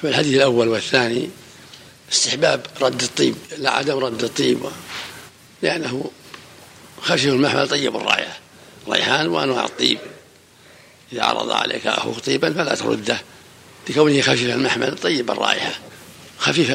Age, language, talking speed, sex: 60-79, Arabic, 115 wpm, male